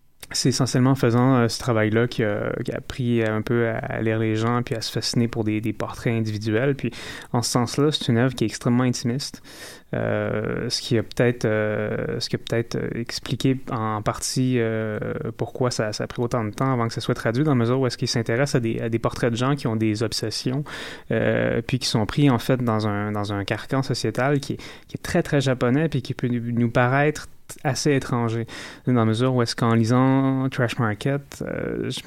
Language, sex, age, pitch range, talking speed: French, male, 20-39, 115-130 Hz, 225 wpm